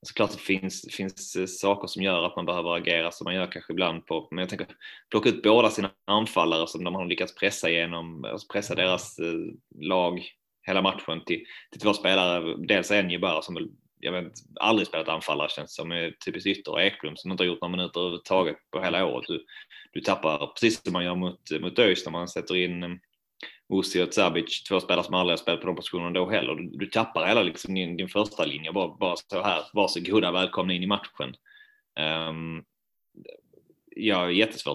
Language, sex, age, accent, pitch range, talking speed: Swedish, male, 20-39, native, 85-95 Hz, 205 wpm